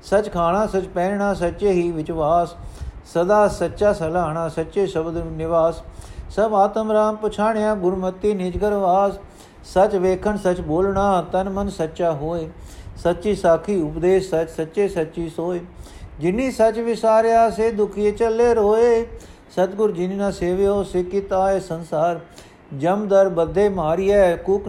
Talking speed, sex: 130 wpm, male